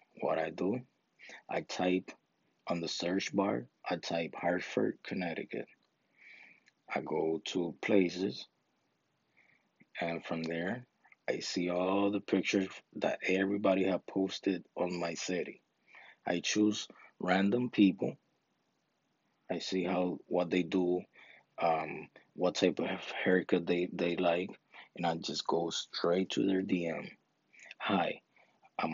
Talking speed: 125 wpm